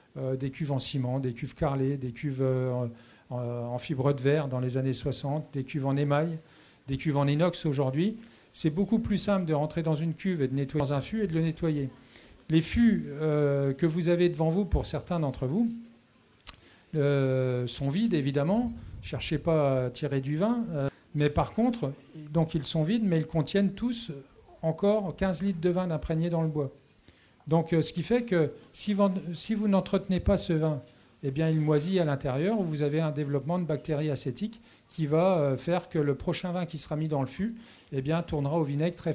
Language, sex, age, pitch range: French, male, 50-69, 140-180 Hz